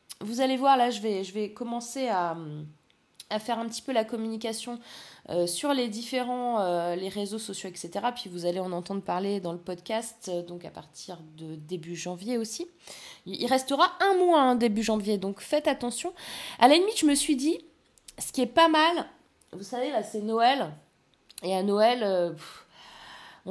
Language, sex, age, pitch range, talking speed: French, female, 20-39, 200-265 Hz, 185 wpm